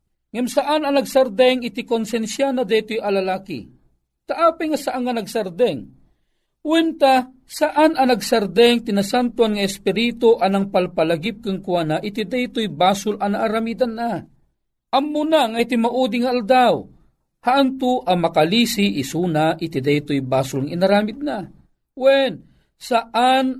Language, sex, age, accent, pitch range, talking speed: Filipino, male, 50-69, native, 200-260 Hz, 120 wpm